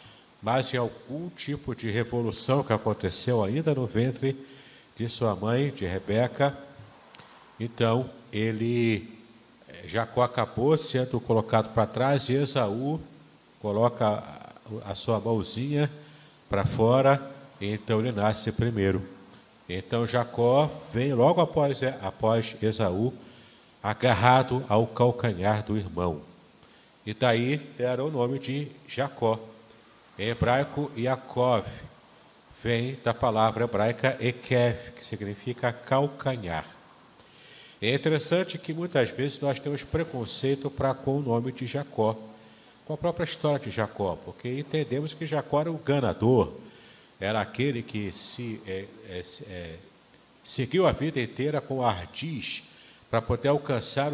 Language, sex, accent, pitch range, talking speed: Portuguese, male, Brazilian, 110-140 Hz, 120 wpm